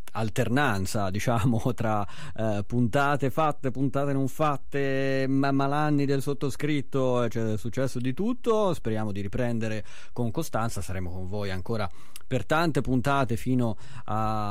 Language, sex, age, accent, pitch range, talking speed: Italian, male, 30-49, native, 95-135 Hz, 130 wpm